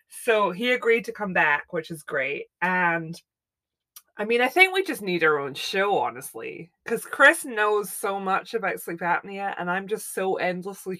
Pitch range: 160-215 Hz